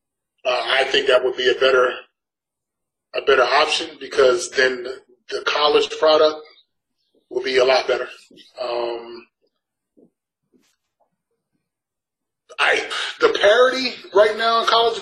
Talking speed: 120 wpm